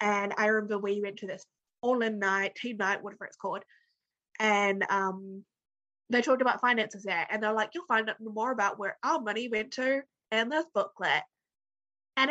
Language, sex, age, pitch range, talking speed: English, female, 20-39, 200-255 Hz, 190 wpm